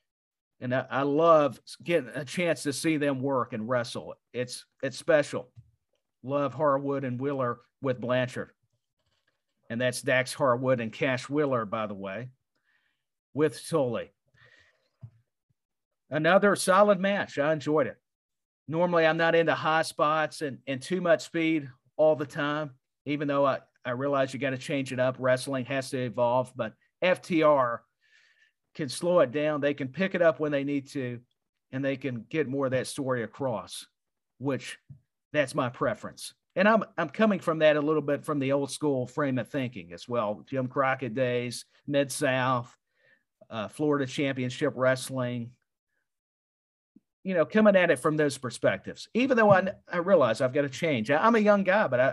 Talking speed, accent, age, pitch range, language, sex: 170 wpm, American, 50-69, 125-155 Hz, English, male